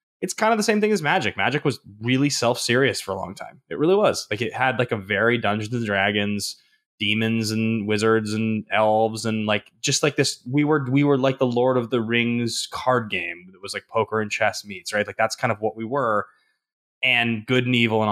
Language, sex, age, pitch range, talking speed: English, male, 20-39, 110-145 Hz, 230 wpm